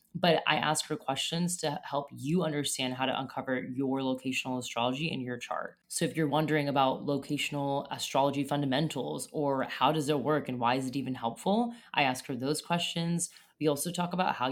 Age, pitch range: 20-39, 130-165 Hz